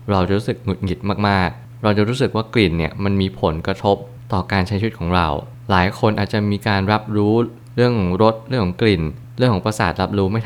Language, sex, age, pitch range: Thai, male, 20-39, 95-115 Hz